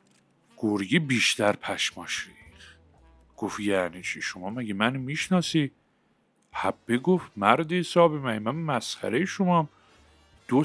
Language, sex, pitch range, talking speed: Persian, male, 110-175 Hz, 105 wpm